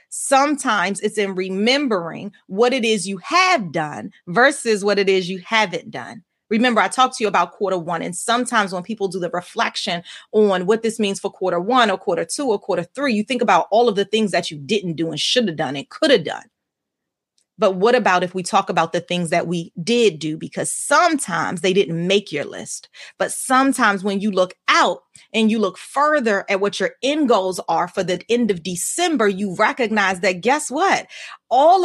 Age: 30-49